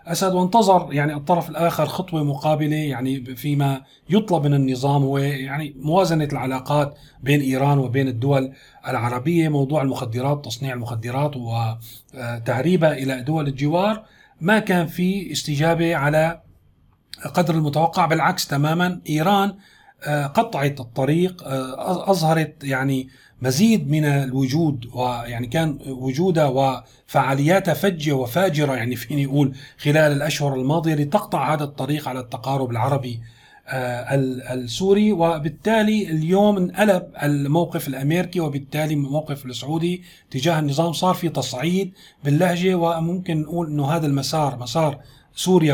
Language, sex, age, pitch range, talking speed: Arabic, male, 40-59, 135-165 Hz, 115 wpm